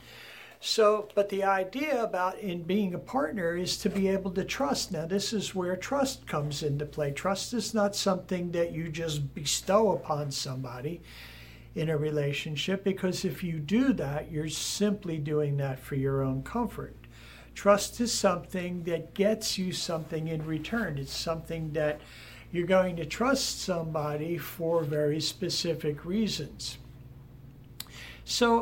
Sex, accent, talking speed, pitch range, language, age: male, American, 150 wpm, 145-190 Hz, English, 60-79